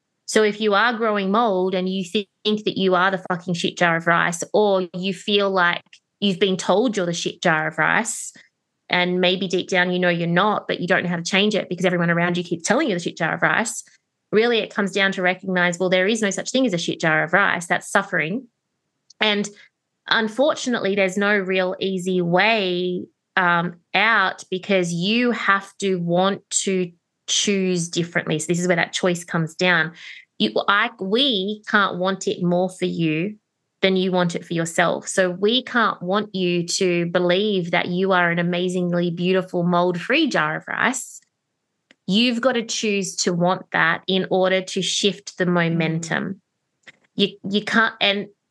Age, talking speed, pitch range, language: 20-39, 190 wpm, 175-200 Hz, English